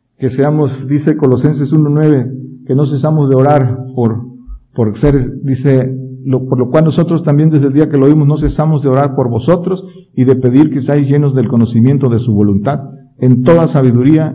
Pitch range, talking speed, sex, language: 120-145 Hz, 190 wpm, male, Spanish